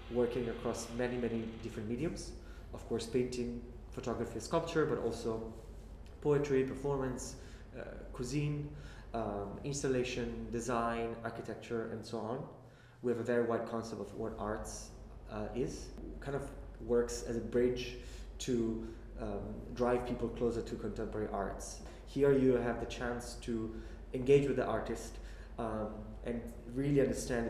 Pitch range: 110-120 Hz